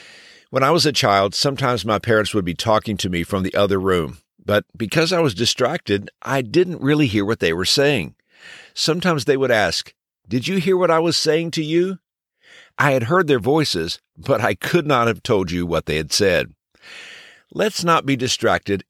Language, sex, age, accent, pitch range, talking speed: English, male, 50-69, American, 100-155 Hz, 200 wpm